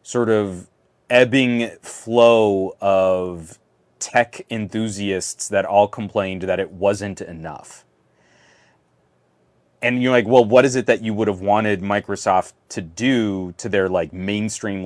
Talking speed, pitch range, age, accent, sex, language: 135 wpm, 90-125 Hz, 30-49, American, male, English